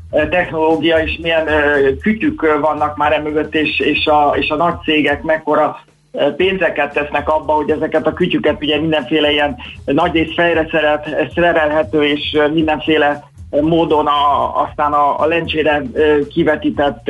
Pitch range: 150-180 Hz